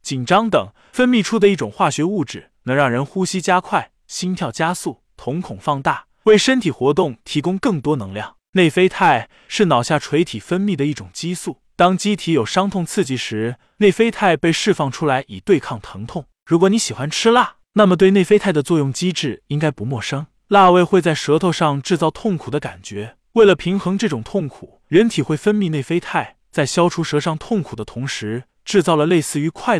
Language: Chinese